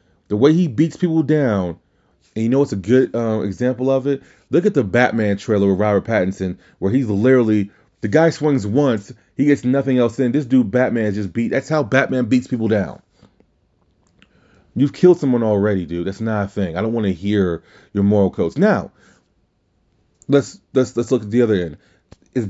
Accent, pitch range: American, 100-140 Hz